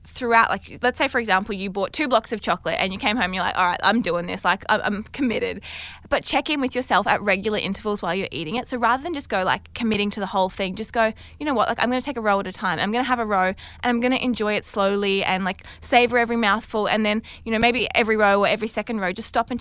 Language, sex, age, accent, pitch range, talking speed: English, female, 20-39, Australian, 185-230 Hz, 295 wpm